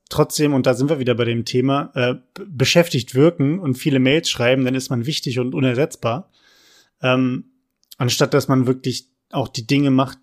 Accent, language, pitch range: German, German, 125-155 Hz